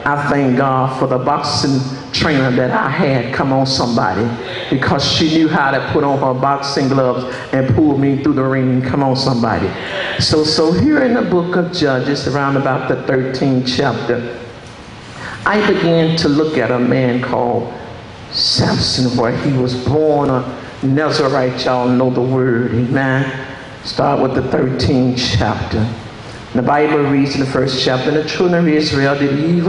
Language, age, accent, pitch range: English, 60-79, American, 125-150 Hz